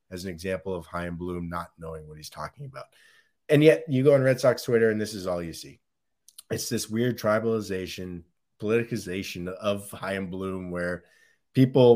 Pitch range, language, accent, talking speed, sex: 95-120 Hz, English, American, 190 wpm, male